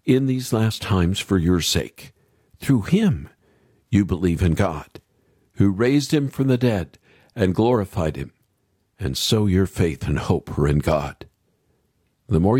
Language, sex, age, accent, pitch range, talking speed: English, male, 50-69, American, 90-125 Hz, 155 wpm